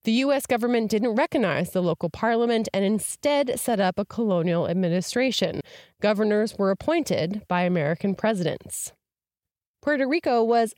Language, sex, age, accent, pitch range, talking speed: English, female, 20-39, American, 180-235 Hz, 135 wpm